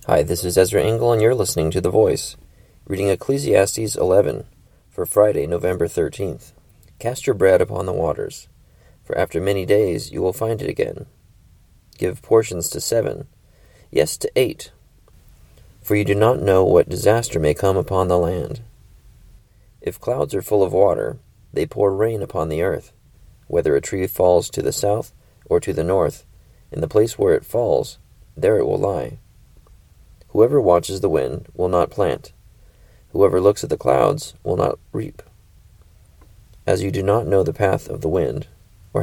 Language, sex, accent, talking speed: English, male, American, 170 wpm